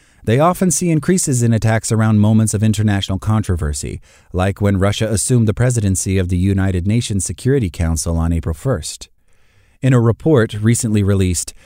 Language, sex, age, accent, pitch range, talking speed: English, male, 30-49, American, 95-120 Hz, 160 wpm